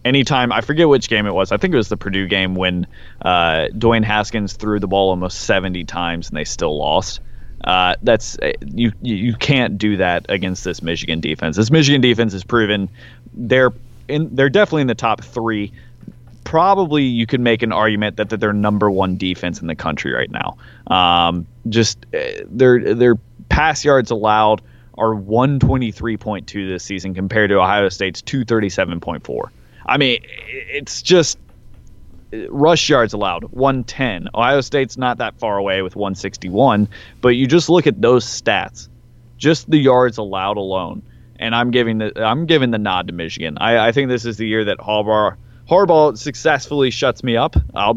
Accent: American